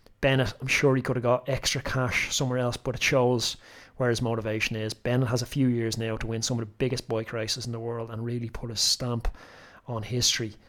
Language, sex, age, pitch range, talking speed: English, male, 30-49, 115-130 Hz, 235 wpm